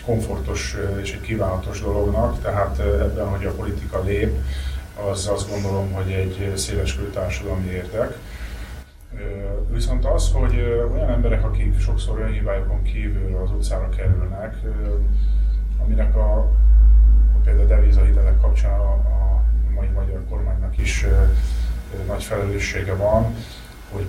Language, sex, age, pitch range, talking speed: Hungarian, male, 20-39, 95-110 Hz, 115 wpm